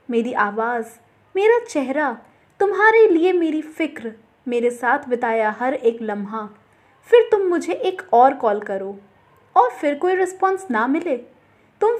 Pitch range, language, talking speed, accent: 230-385 Hz, Hindi, 140 wpm, native